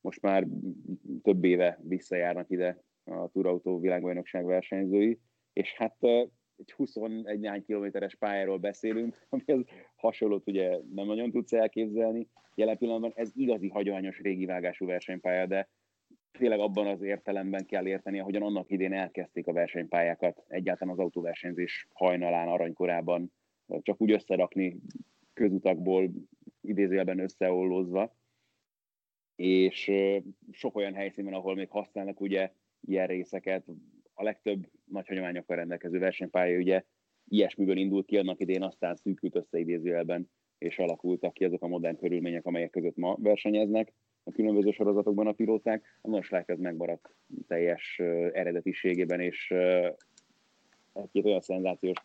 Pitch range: 90-105 Hz